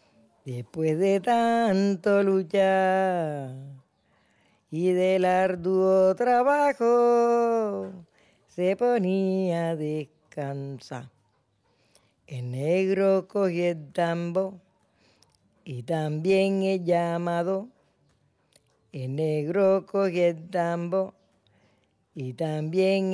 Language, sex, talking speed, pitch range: French, female, 75 wpm, 150-195 Hz